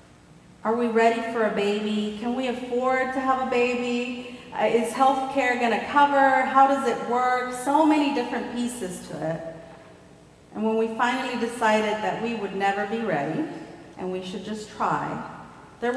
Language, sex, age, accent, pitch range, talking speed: English, female, 40-59, American, 200-265 Hz, 165 wpm